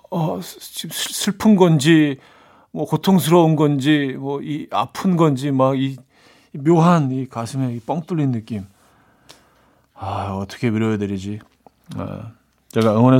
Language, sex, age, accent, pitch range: Korean, male, 40-59, native, 120-175 Hz